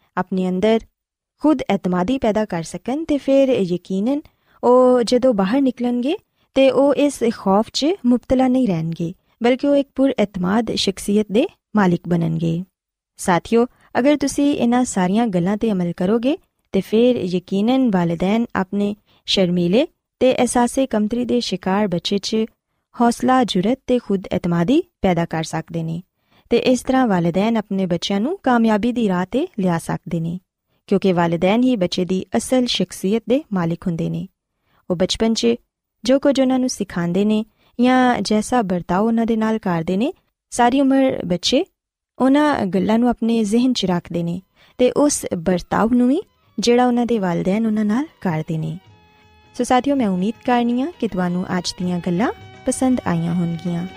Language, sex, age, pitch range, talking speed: Punjabi, female, 20-39, 180-250 Hz, 130 wpm